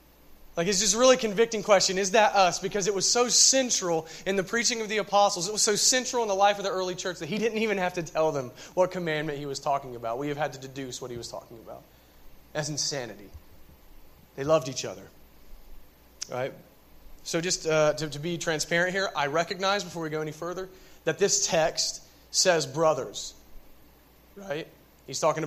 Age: 30-49